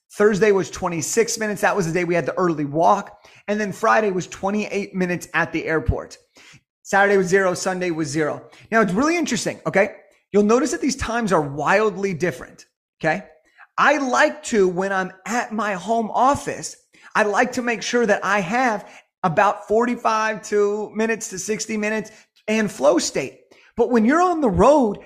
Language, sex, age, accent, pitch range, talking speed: English, male, 30-49, American, 190-230 Hz, 180 wpm